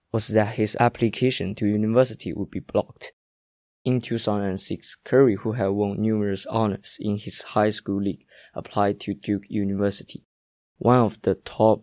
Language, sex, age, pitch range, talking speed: English, male, 20-39, 100-115 Hz, 150 wpm